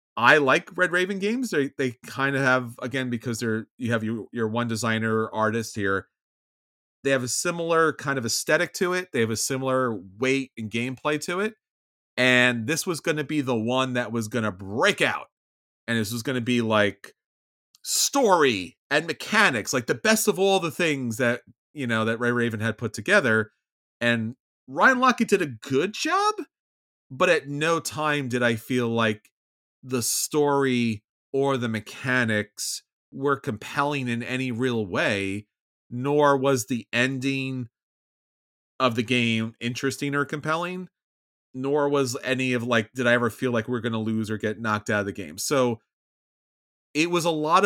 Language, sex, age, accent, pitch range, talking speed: English, male, 30-49, American, 115-145 Hz, 180 wpm